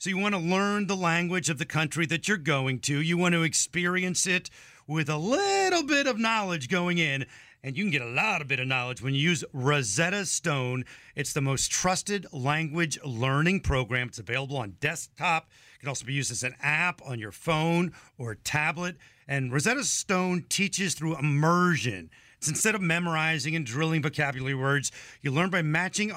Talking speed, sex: 190 wpm, male